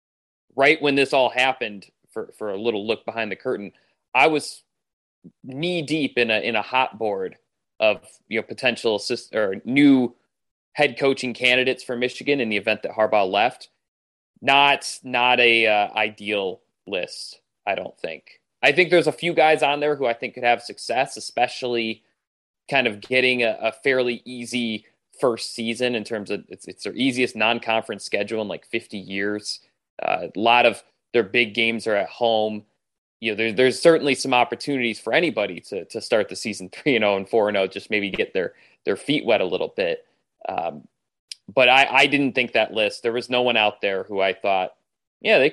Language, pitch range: English, 110-140 Hz